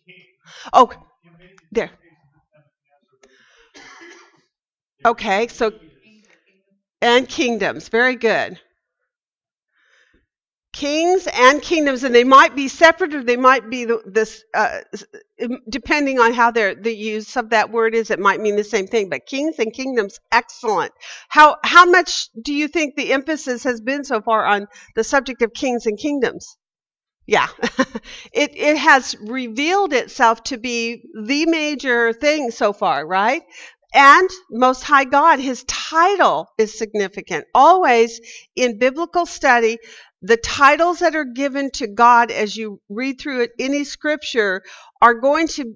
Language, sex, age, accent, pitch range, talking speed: English, female, 50-69, American, 220-290 Hz, 135 wpm